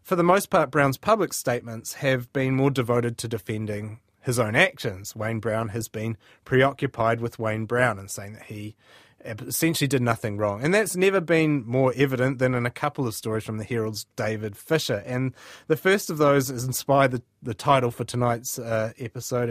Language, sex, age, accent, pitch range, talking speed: English, male, 30-49, Australian, 115-145 Hz, 195 wpm